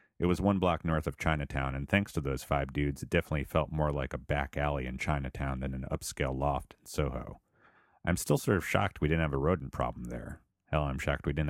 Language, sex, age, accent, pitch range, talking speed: English, male, 30-49, American, 70-90 Hz, 240 wpm